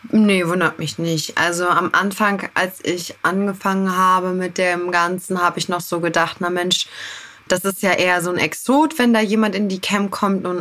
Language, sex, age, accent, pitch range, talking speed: German, female, 20-39, German, 165-195 Hz, 205 wpm